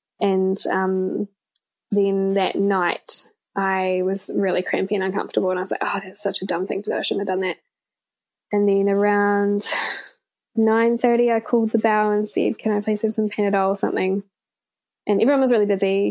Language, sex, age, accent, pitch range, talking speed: English, female, 10-29, Australian, 195-230 Hz, 195 wpm